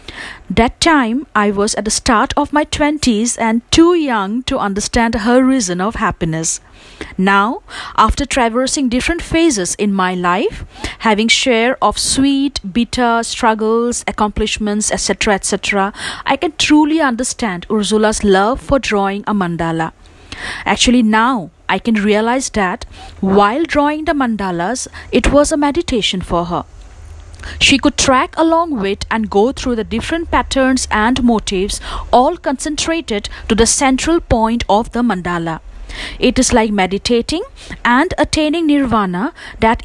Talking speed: 140 wpm